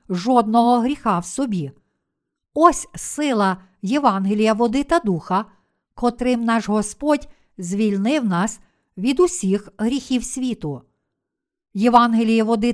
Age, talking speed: 50-69, 100 wpm